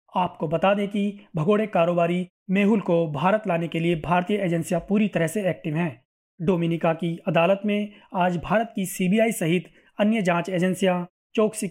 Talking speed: 165 wpm